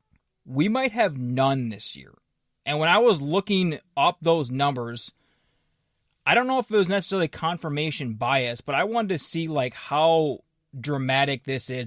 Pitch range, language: 125-160 Hz, English